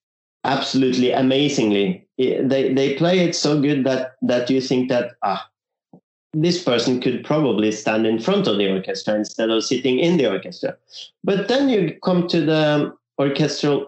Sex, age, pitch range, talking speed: male, 30-49, 115-155 Hz, 160 wpm